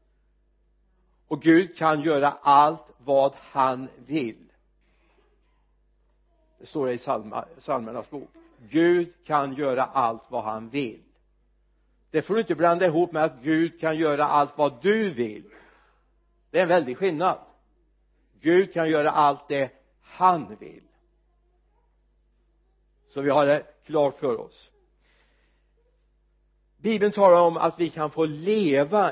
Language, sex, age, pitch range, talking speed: Swedish, male, 60-79, 130-165 Hz, 130 wpm